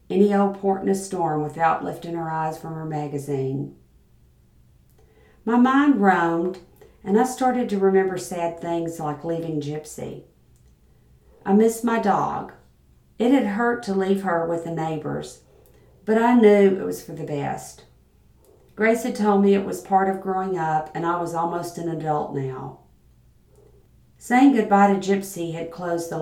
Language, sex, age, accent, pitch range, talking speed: English, female, 50-69, American, 150-195 Hz, 160 wpm